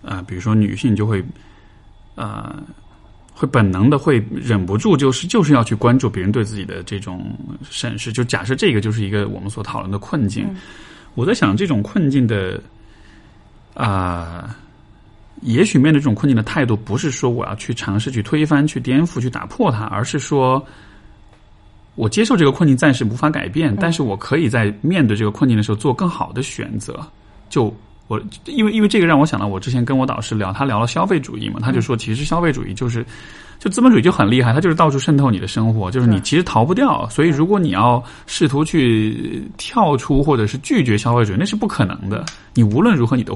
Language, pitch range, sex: Chinese, 105-145 Hz, male